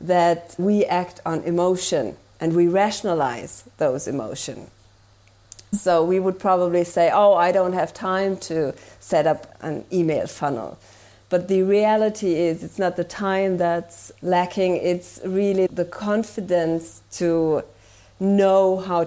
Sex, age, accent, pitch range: female, 40-59, German, 160-185 Hz